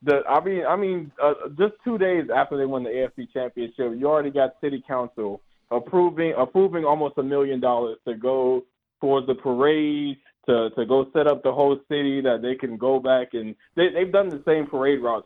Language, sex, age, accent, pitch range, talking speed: English, male, 20-39, American, 120-145 Hz, 205 wpm